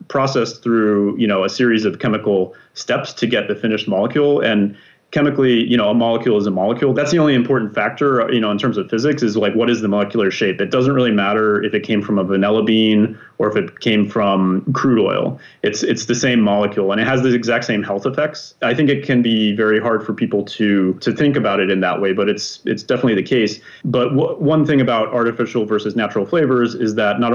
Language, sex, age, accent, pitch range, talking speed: English, male, 30-49, American, 105-130 Hz, 235 wpm